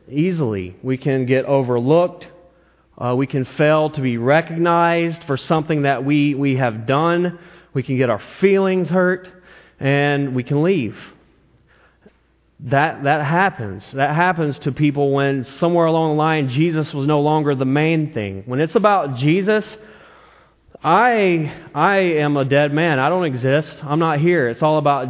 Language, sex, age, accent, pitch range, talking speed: English, male, 30-49, American, 135-170 Hz, 160 wpm